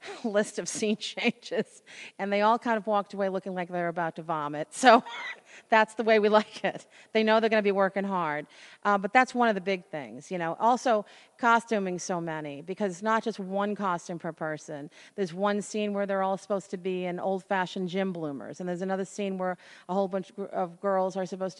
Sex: female